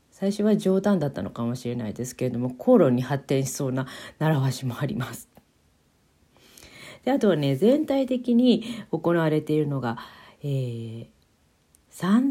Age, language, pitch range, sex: 40-59, Japanese, 125-195 Hz, female